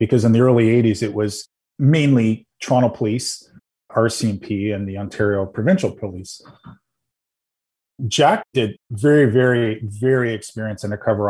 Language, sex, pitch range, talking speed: English, male, 105-125 Hz, 120 wpm